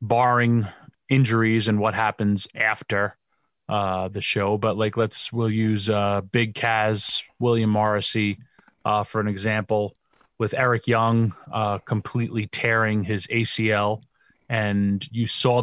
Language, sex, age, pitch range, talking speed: English, male, 30-49, 105-120 Hz, 130 wpm